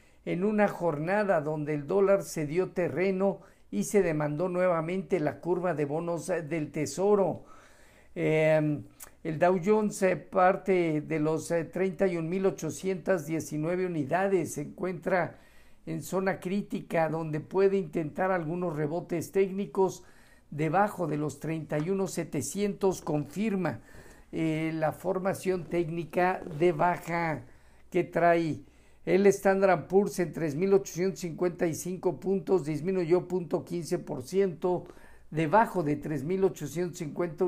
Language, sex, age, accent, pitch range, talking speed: Spanish, male, 50-69, Mexican, 160-190 Hz, 100 wpm